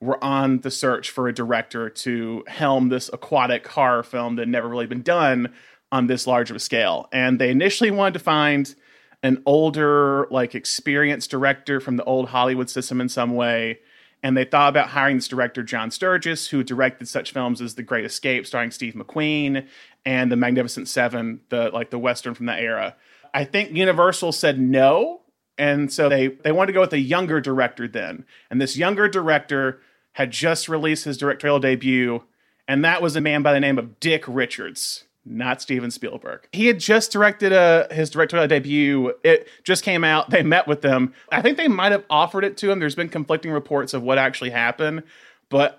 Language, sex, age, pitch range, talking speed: English, male, 30-49, 125-160 Hz, 195 wpm